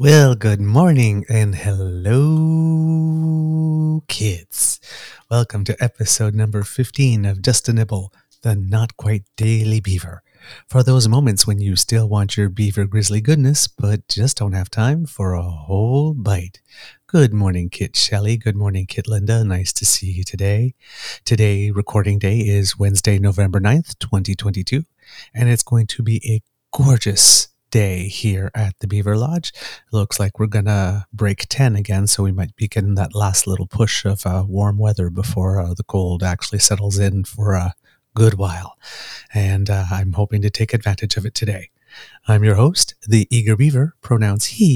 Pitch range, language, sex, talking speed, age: 100-120 Hz, English, male, 165 wpm, 30-49